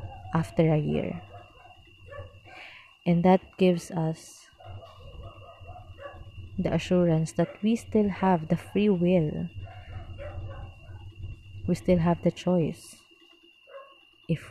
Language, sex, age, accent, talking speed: Filipino, female, 20-39, native, 90 wpm